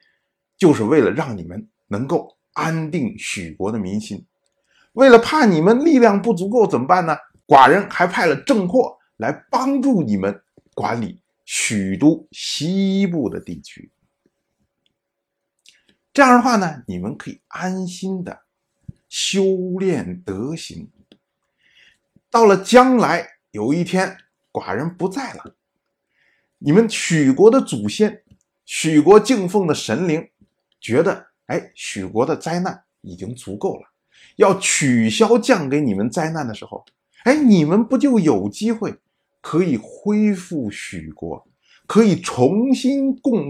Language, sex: Chinese, male